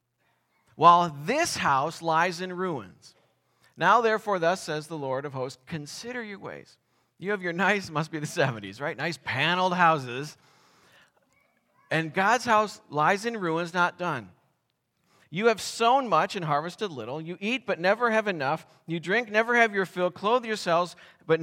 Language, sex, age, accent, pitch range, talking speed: English, male, 40-59, American, 140-190 Hz, 165 wpm